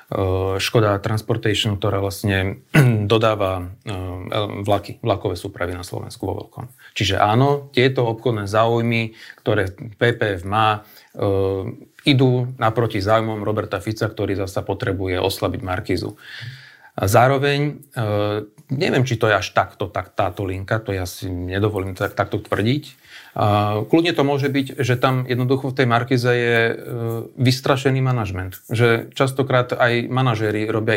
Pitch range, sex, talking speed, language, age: 105-125 Hz, male, 130 wpm, Slovak, 40-59